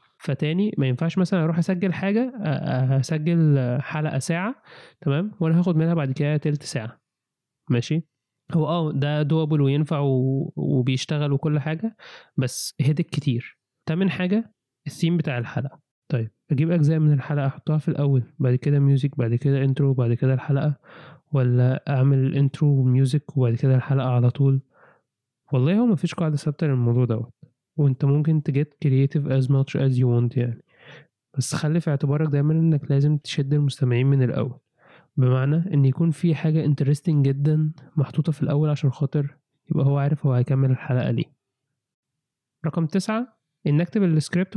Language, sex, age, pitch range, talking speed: Arabic, male, 20-39, 135-160 Hz, 150 wpm